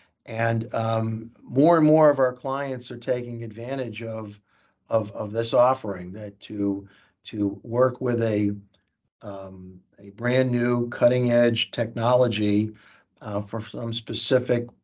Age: 50-69